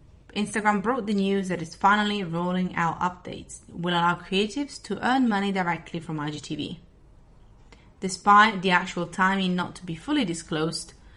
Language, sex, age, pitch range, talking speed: English, female, 30-49, 165-215 Hz, 150 wpm